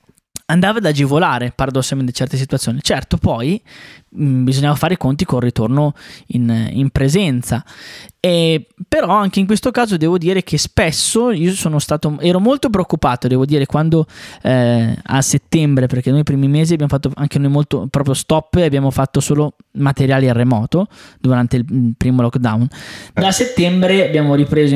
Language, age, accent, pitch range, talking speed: Italian, 20-39, native, 130-170 Hz, 165 wpm